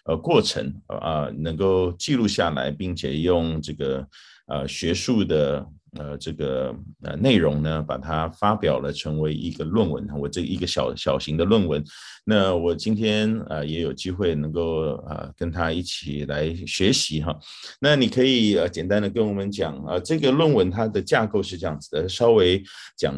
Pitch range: 75-95 Hz